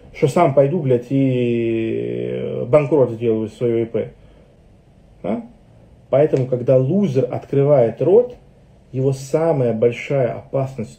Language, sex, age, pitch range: Russian, male, 40-59, 125-160 Hz